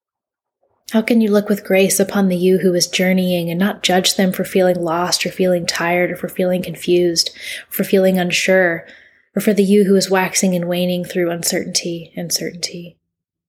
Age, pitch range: 20-39, 175-190 Hz